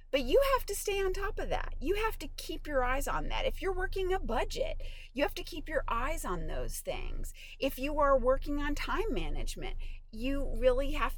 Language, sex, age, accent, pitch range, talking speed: English, female, 30-49, American, 240-380 Hz, 220 wpm